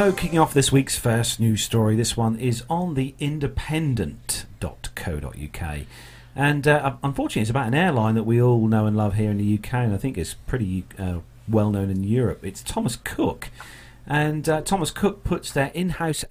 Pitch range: 105-145 Hz